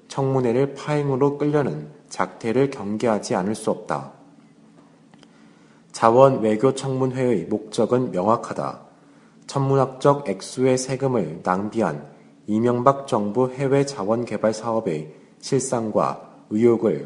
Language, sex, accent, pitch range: Korean, male, native, 105-135 Hz